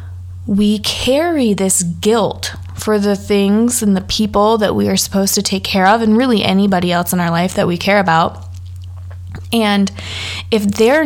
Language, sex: English, female